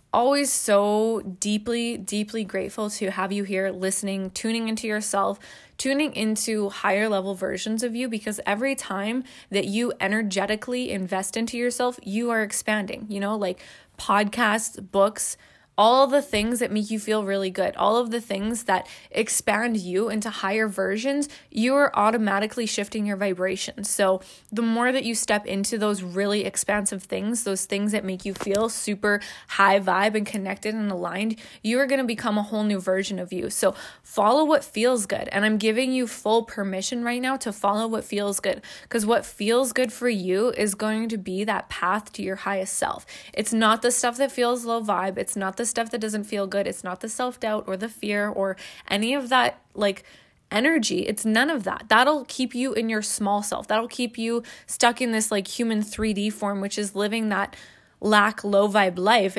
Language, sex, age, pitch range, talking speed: English, female, 20-39, 200-235 Hz, 190 wpm